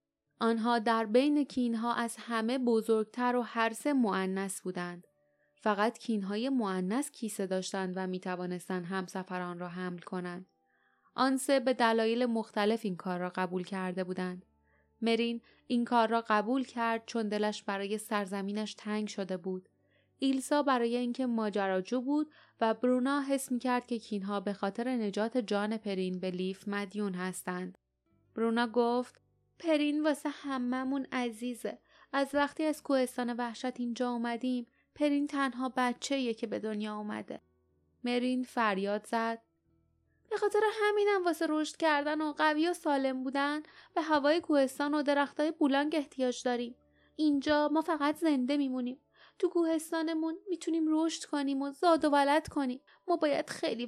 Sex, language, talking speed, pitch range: female, Persian, 140 wpm, 210-285 Hz